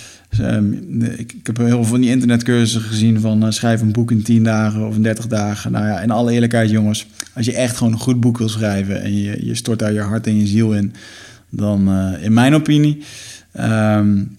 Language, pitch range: Dutch, 105-120 Hz